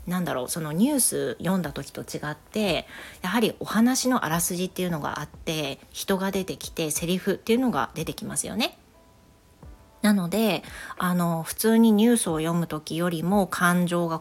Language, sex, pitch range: Japanese, female, 165-225 Hz